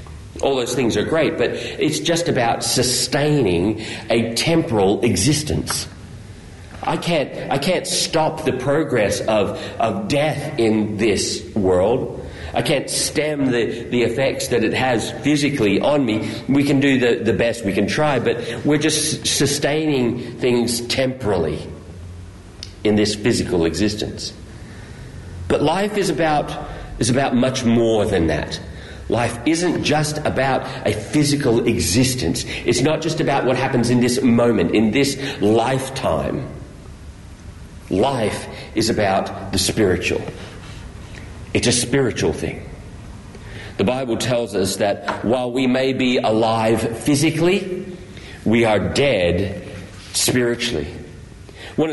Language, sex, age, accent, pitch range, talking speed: English, male, 40-59, Australian, 100-135 Hz, 130 wpm